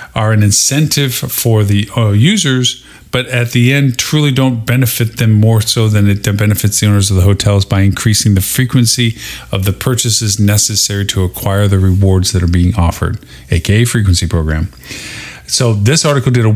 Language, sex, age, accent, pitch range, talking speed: English, male, 50-69, American, 105-130 Hz, 180 wpm